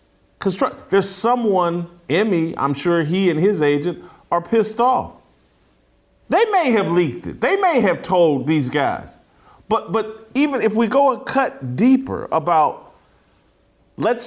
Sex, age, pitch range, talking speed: male, 40-59, 140-230 Hz, 145 wpm